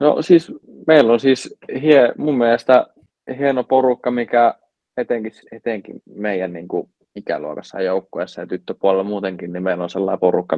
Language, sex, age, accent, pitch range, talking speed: Finnish, male, 20-39, native, 95-120 Hz, 140 wpm